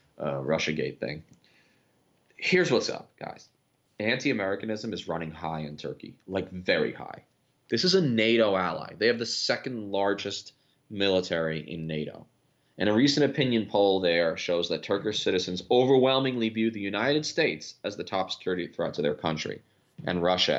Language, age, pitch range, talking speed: English, 30-49, 85-115 Hz, 155 wpm